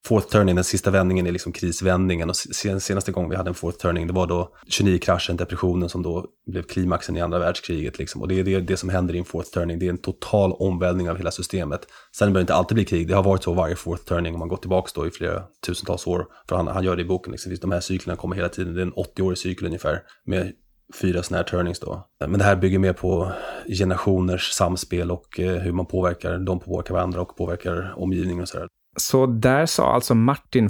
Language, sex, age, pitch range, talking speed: Swedish, male, 20-39, 90-100 Hz, 240 wpm